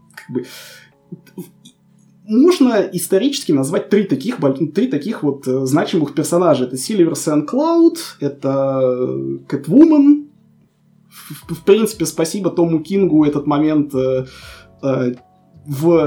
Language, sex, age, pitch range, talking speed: Russian, male, 20-39, 150-220 Hz, 90 wpm